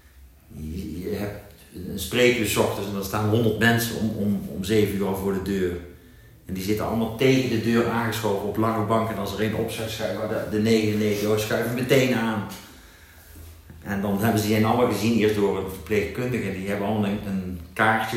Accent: Dutch